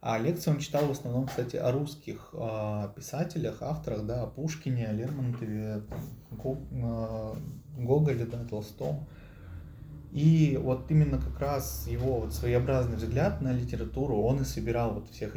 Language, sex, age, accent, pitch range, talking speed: Russian, male, 20-39, native, 110-140 Hz, 150 wpm